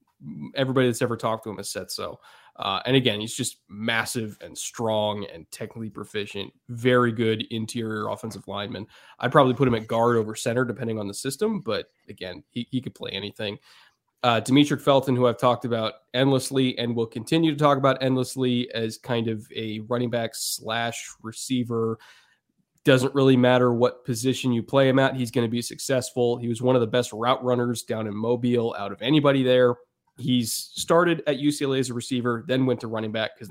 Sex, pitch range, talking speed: male, 115-130 Hz, 195 wpm